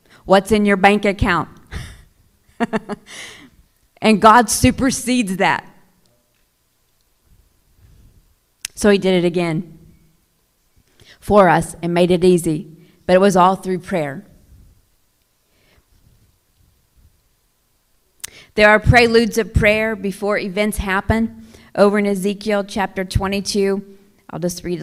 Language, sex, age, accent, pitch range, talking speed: English, female, 40-59, American, 165-215 Hz, 100 wpm